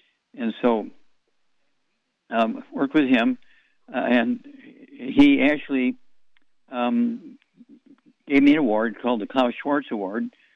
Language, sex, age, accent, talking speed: English, male, 60-79, American, 115 wpm